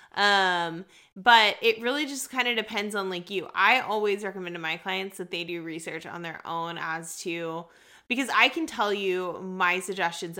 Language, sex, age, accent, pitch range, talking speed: English, female, 20-39, American, 170-210 Hz, 190 wpm